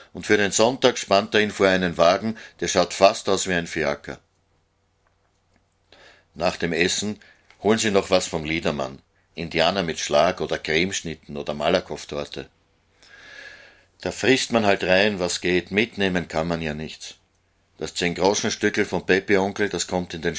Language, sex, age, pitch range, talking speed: German, male, 60-79, 85-100 Hz, 160 wpm